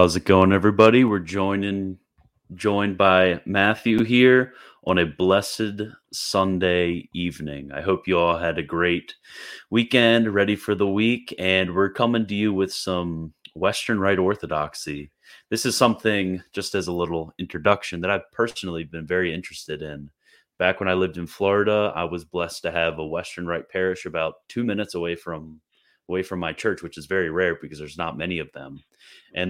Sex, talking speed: male, 175 wpm